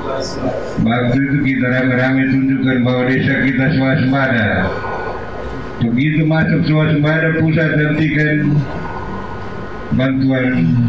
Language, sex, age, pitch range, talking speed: Indonesian, male, 50-69, 115-140 Hz, 85 wpm